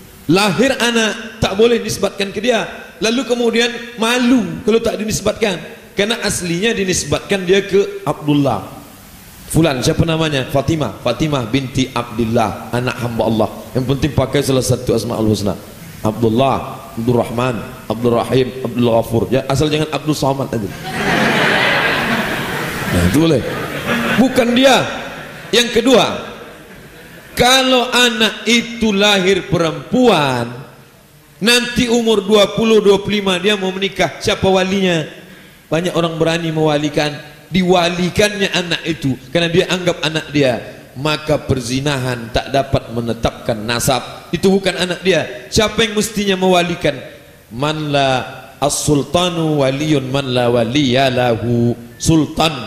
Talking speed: 115 wpm